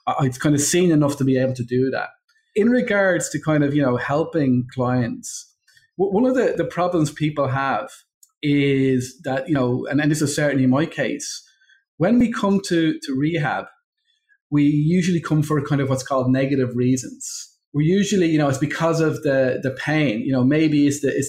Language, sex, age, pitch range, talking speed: English, male, 30-49, 135-175 Hz, 200 wpm